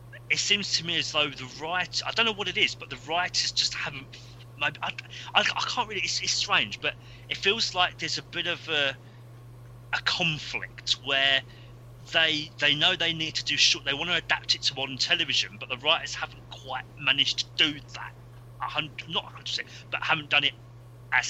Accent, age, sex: British, 30-49, male